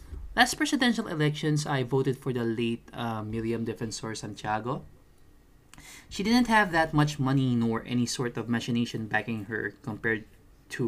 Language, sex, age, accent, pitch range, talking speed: Filipino, male, 20-39, native, 115-145 Hz, 150 wpm